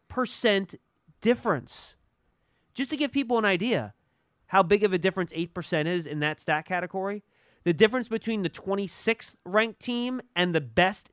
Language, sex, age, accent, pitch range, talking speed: English, male, 30-49, American, 150-195 Hz, 160 wpm